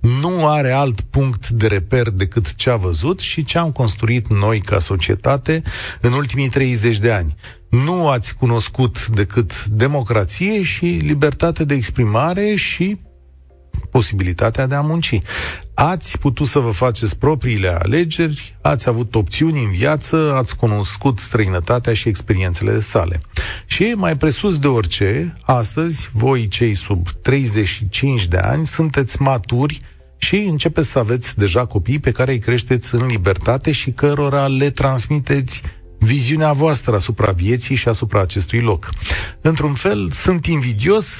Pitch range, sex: 105-145 Hz, male